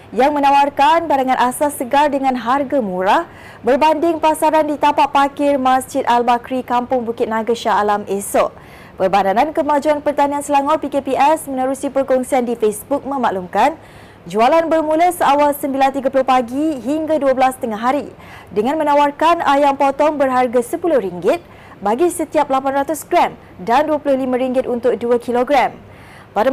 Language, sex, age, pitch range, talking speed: Malay, female, 20-39, 245-290 Hz, 125 wpm